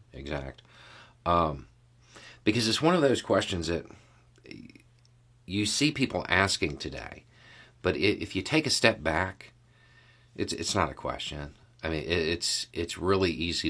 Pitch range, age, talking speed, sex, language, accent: 85-120 Hz, 50-69, 140 wpm, male, English, American